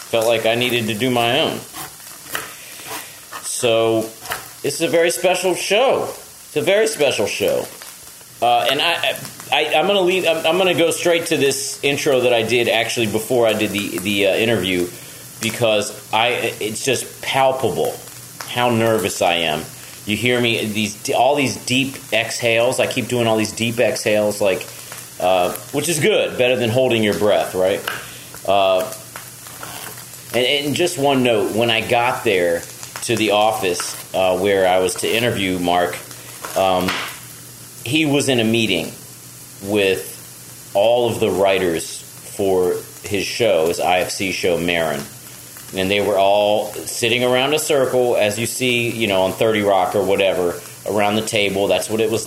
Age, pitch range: 30-49, 100-125 Hz